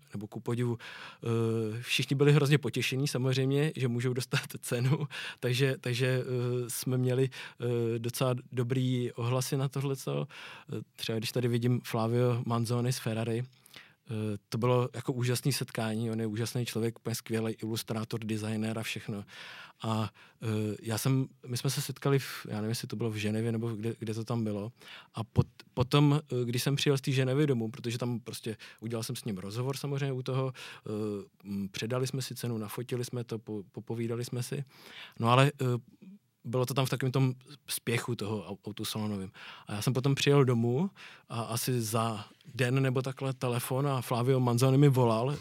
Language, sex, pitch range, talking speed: Czech, male, 115-135 Hz, 165 wpm